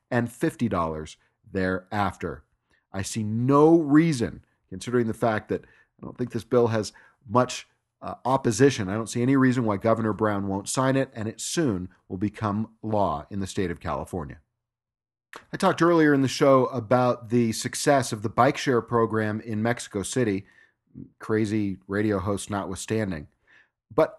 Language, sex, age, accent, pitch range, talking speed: English, male, 40-59, American, 105-135 Hz, 160 wpm